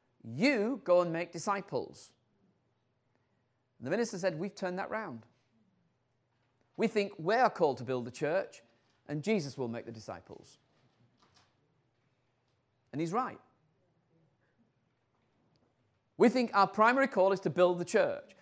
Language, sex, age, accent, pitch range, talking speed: Danish, male, 40-59, British, 130-205 Hz, 130 wpm